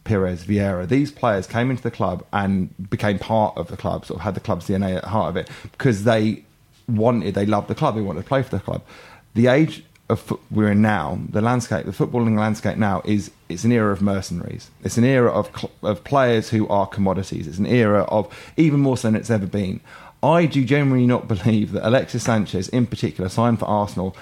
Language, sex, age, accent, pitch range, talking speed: English, male, 30-49, British, 105-130 Hz, 230 wpm